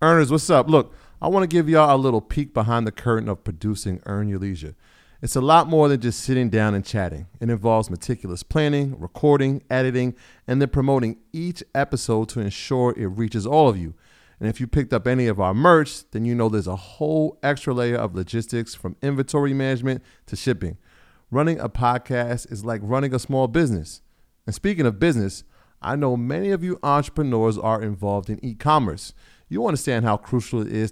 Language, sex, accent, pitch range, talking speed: English, male, American, 105-135 Hz, 200 wpm